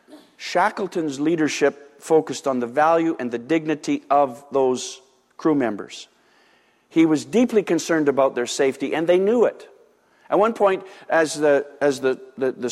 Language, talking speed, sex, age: English, 155 wpm, male, 50-69